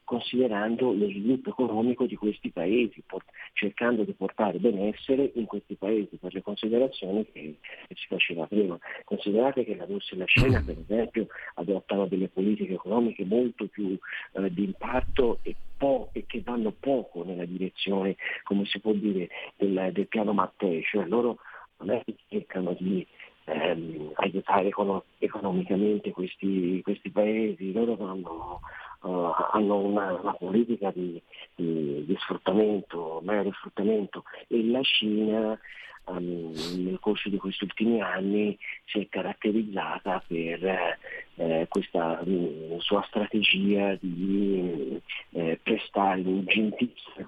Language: Italian